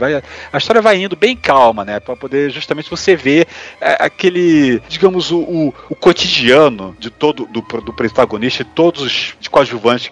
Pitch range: 115-155 Hz